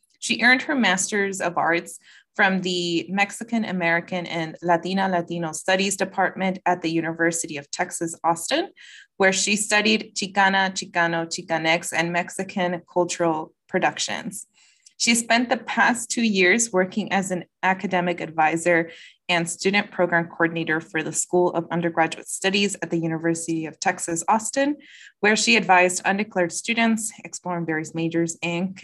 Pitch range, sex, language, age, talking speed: 165-205 Hz, female, English, 20-39, 140 wpm